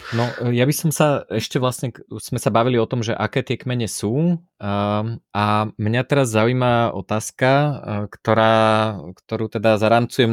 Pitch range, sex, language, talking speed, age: 100-115 Hz, male, Slovak, 170 wpm, 20-39